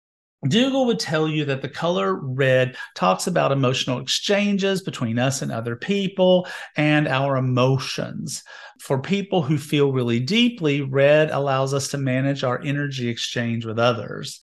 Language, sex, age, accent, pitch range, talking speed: English, male, 40-59, American, 130-165 Hz, 150 wpm